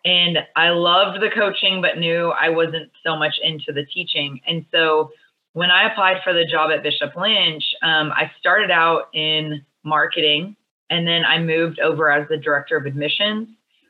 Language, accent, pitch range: English, American, 150-180 Hz